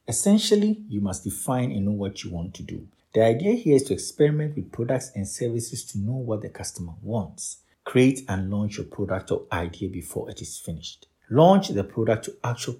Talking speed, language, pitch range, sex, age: 200 wpm, English, 100-140 Hz, male, 50-69